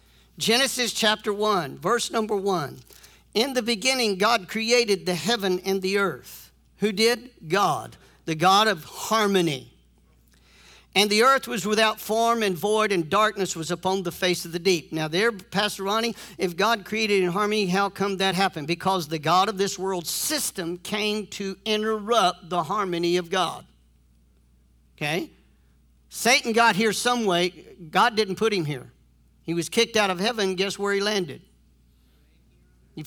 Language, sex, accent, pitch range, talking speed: English, male, American, 155-215 Hz, 160 wpm